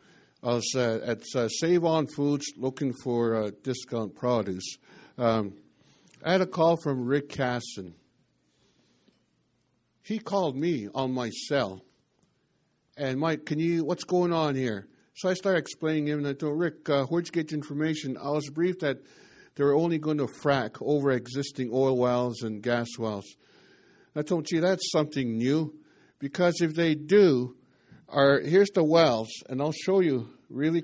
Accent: American